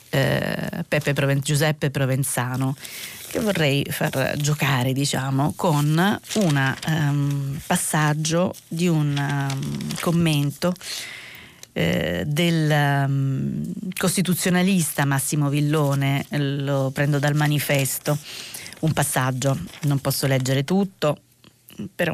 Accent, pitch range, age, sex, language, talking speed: native, 135-160 Hz, 30-49, female, Italian, 90 wpm